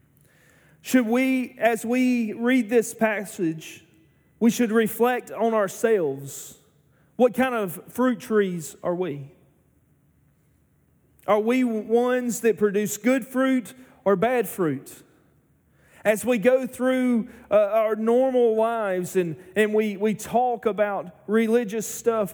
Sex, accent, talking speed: male, American, 120 wpm